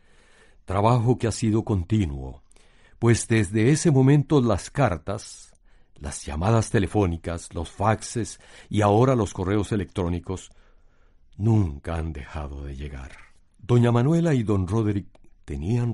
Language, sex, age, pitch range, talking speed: Spanish, male, 60-79, 80-115 Hz, 120 wpm